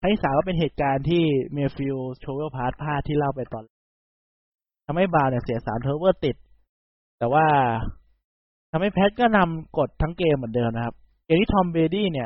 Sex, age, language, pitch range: male, 20-39, Thai, 125-165 Hz